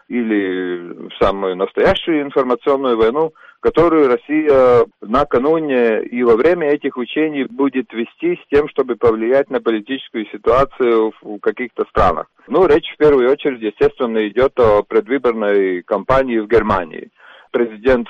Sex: male